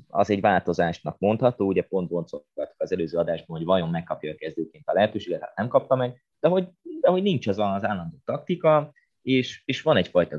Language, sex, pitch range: Hungarian, male, 90-130 Hz